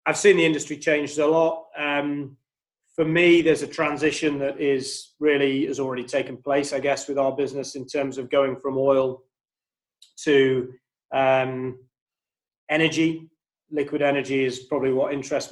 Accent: British